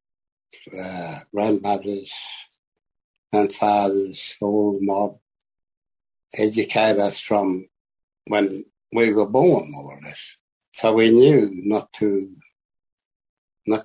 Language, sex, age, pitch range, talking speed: English, male, 60-79, 100-115 Hz, 90 wpm